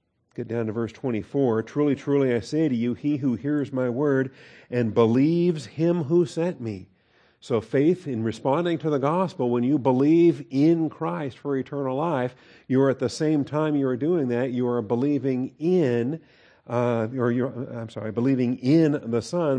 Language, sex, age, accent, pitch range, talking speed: English, male, 50-69, American, 115-140 Hz, 185 wpm